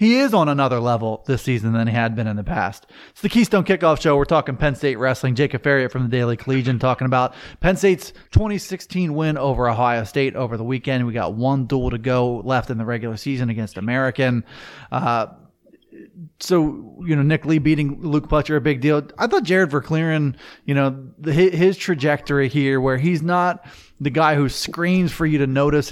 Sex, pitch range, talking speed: male, 130-165 Hz, 205 wpm